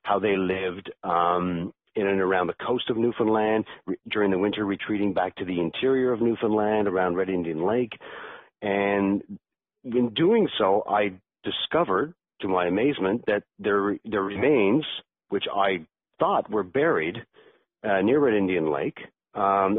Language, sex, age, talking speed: English, male, 50-69, 150 wpm